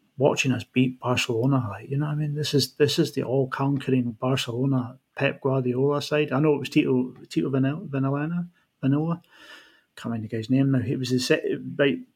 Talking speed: 190 wpm